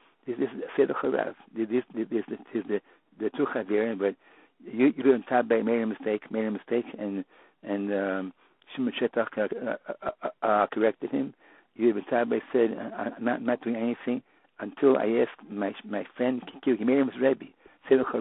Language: English